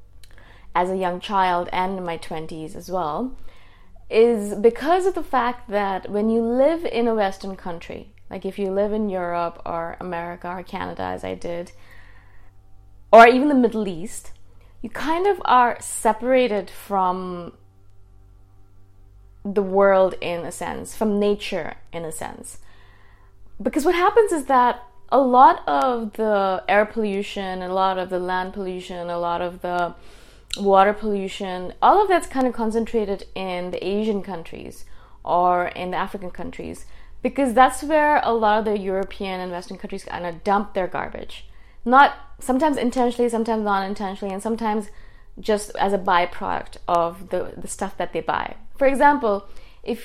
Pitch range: 170-225 Hz